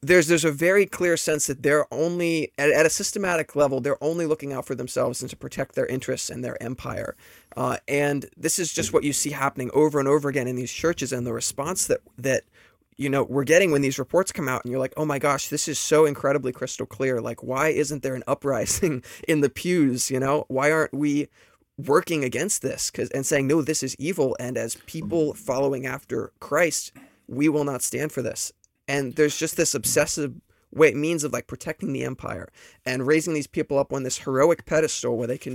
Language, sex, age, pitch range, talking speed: English, male, 20-39, 130-160 Hz, 220 wpm